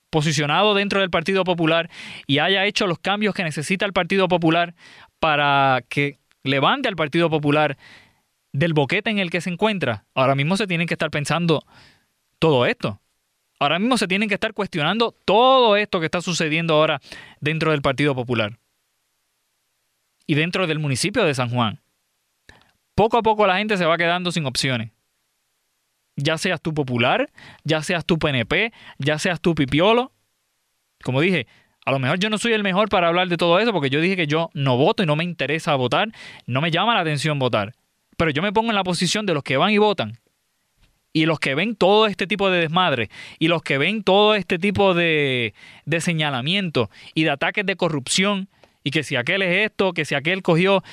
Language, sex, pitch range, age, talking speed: Spanish, male, 145-195 Hz, 20-39, 190 wpm